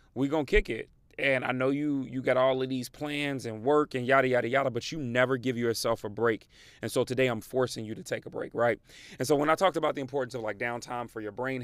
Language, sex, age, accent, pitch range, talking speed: English, male, 30-49, American, 115-135 Hz, 275 wpm